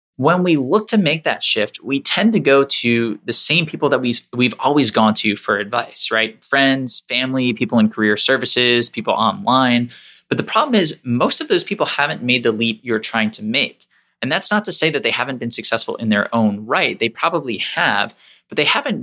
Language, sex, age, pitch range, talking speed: English, male, 20-39, 115-155 Hz, 210 wpm